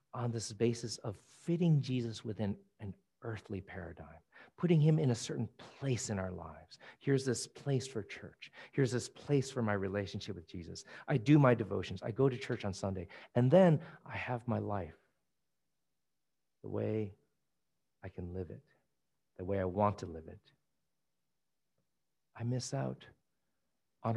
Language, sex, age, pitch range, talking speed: English, male, 50-69, 100-125 Hz, 160 wpm